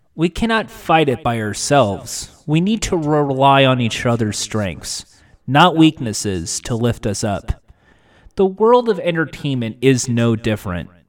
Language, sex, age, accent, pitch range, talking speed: English, male, 30-49, American, 110-170 Hz, 145 wpm